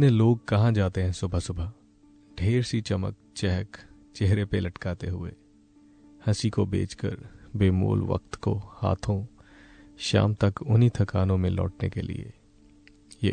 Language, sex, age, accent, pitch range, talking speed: Hindi, male, 30-49, native, 95-120 Hz, 140 wpm